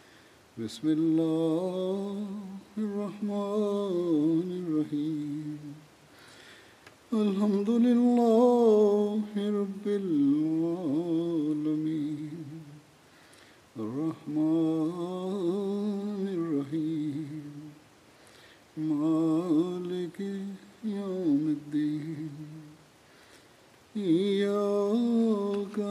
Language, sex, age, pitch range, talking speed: Swahili, male, 60-79, 150-200 Hz, 30 wpm